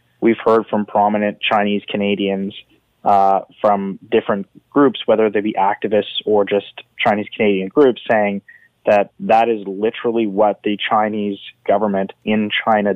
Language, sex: English, male